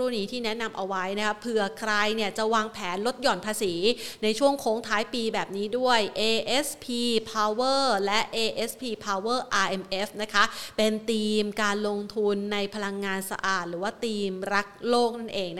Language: Thai